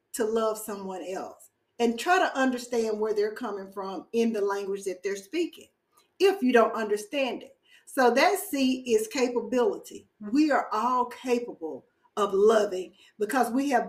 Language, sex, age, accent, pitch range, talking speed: English, female, 40-59, American, 215-305 Hz, 160 wpm